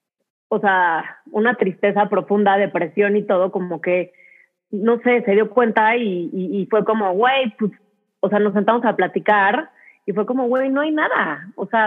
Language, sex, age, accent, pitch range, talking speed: Spanish, female, 30-49, Mexican, 200-250 Hz, 185 wpm